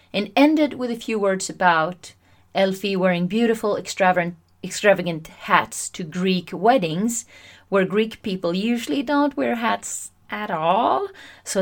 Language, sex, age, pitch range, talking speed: English, female, 30-49, 155-215 Hz, 135 wpm